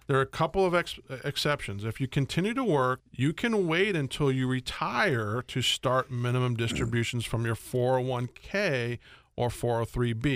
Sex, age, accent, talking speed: male, 40-59, American, 150 wpm